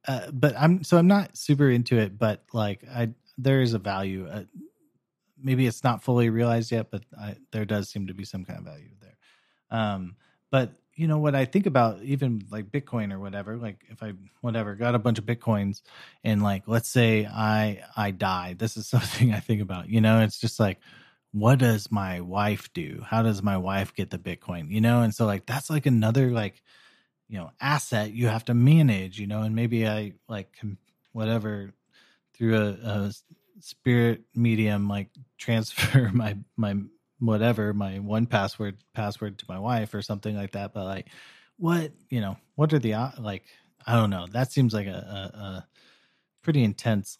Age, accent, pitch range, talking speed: 30-49, American, 100-125 Hz, 190 wpm